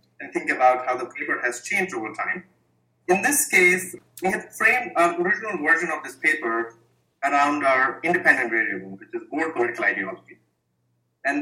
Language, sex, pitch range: English, male, 120-200 Hz